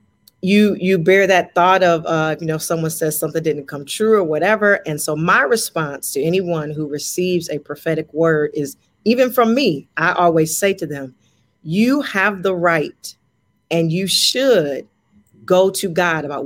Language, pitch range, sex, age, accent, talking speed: English, 160-195 Hz, female, 40-59, American, 175 wpm